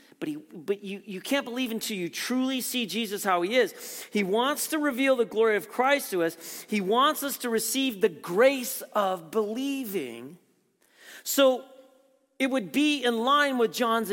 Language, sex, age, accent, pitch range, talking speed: English, male, 40-59, American, 170-250 Hz, 180 wpm